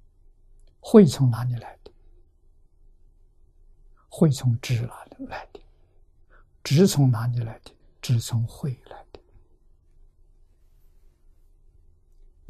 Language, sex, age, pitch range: Chinese, male, 60-79, 80-125 Hz